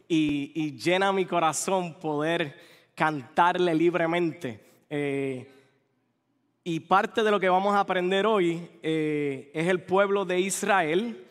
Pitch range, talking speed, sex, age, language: 155-190 Hz, 125 wpm, male, 20-39, English